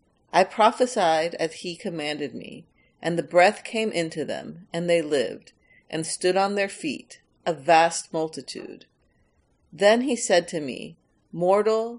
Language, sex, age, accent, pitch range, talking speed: English, female, 40-59, American, 165-205 Hz, 145 wpm